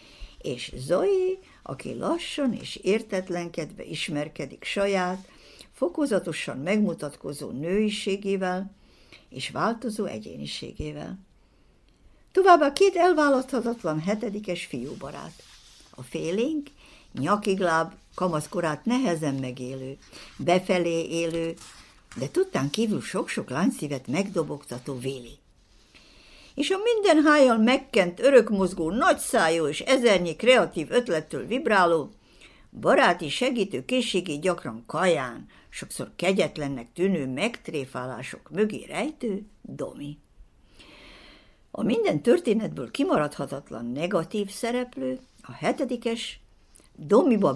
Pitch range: 150-235 Hz